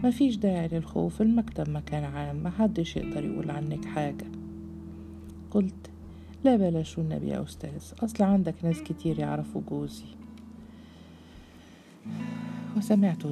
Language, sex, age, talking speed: Arabic, female, 50-69, 115 wpm